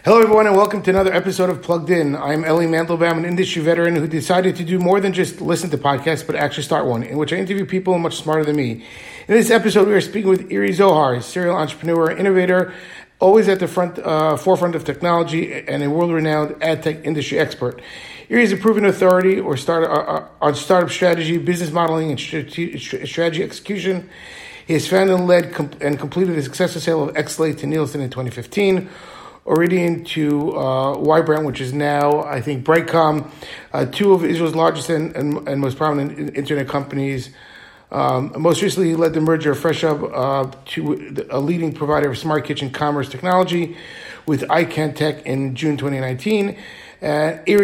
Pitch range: 150-180 Hz